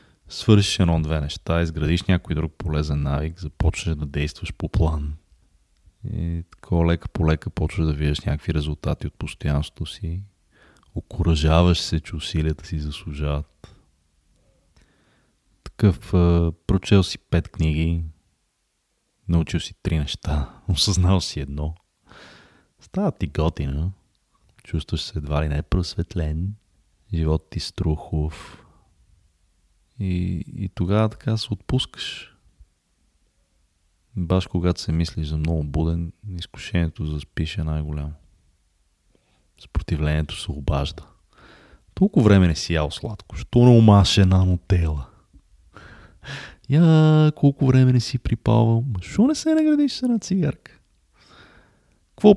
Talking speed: 115 wpm